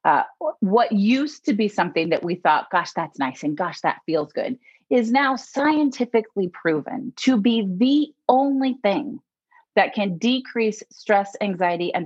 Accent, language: American, English